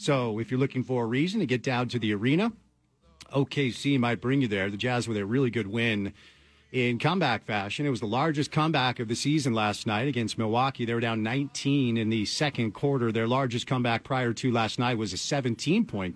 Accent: American